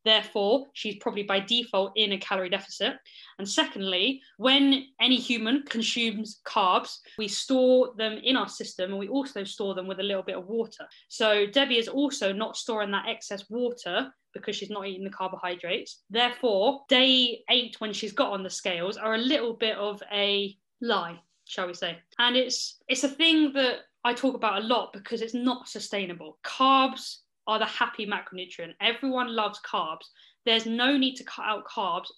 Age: 20-39